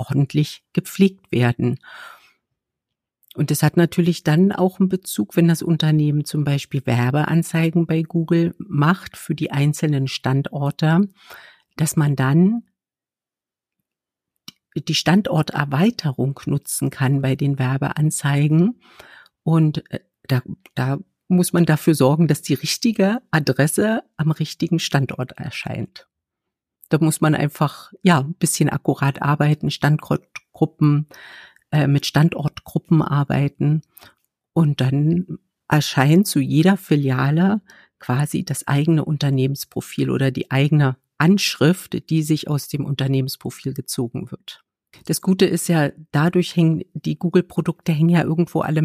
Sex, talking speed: female, 120 wpm